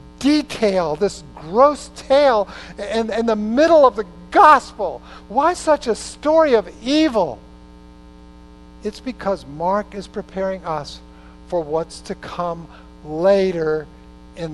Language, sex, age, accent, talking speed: English, male, 50-69, American, 120 wpm